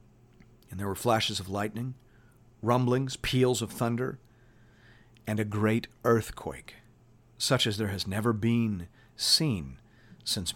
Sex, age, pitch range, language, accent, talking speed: male, 50-69, 115-145 Hz, English, American, 125 wpm